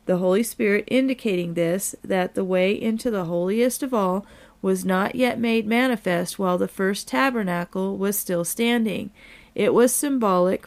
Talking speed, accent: 155 wpm, American